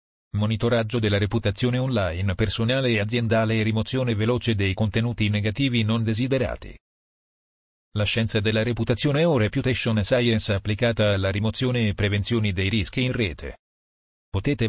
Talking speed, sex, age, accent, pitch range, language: 130 wpm, male, 40-59, native, 100-120 Hz, Italian